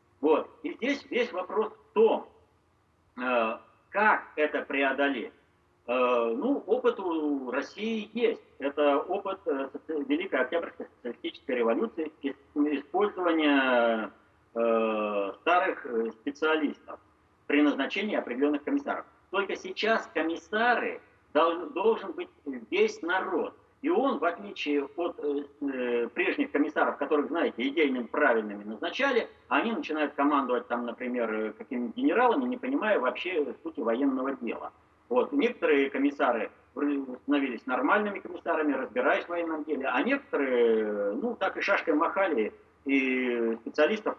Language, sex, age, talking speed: Russian, male, 50-69, 110 wpm